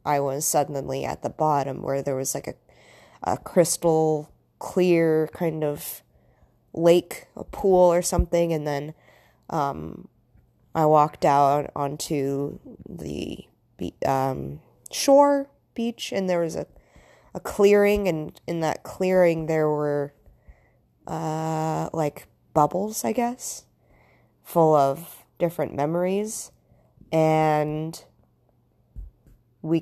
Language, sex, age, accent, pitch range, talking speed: English, female, 20-39, American, 150-175 Hz, 115 wpm